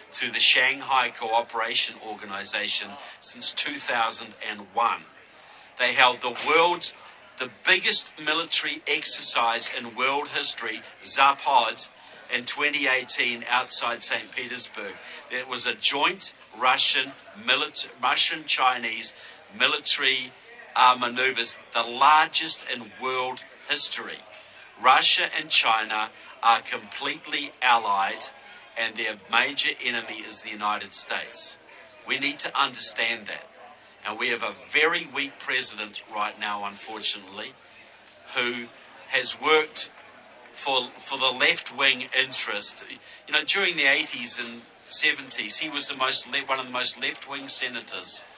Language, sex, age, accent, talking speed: English, male, 50-69, Australian, 120 wpm